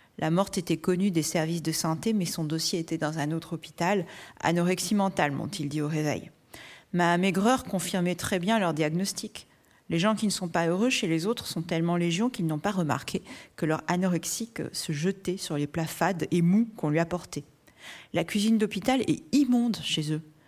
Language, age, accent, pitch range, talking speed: French, 40-59, French, 155-195 Hz, 195 wpm